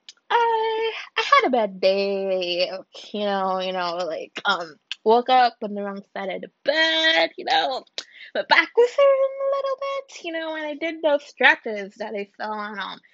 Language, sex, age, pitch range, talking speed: English, female, 10-29, 215-310 Hz, 190 wpm